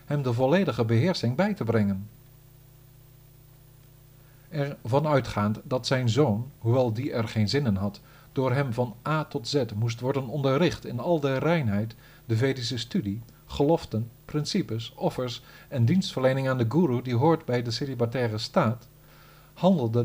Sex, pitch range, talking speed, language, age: male, 115-150 Hz, 155 wpm, Dutch, 50-69